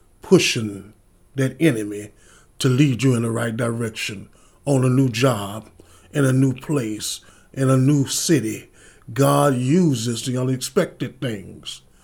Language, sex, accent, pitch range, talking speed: English, male, American, 110-140 Hz, 135 wpm